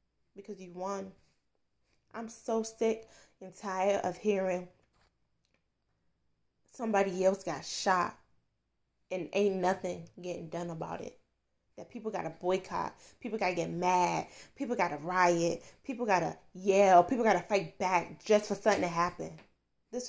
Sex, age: female, 20-39